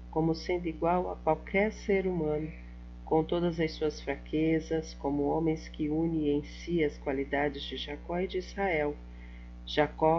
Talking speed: 155 wpm